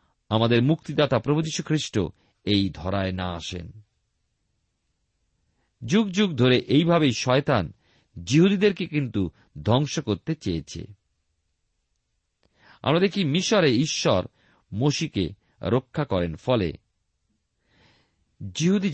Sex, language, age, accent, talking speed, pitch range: male, Bengali, 50-69, native, 40 wpm, 95-155 Hz